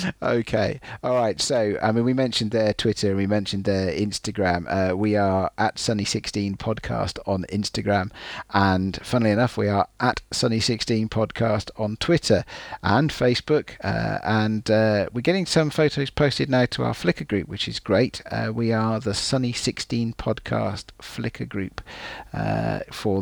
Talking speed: 155 wpm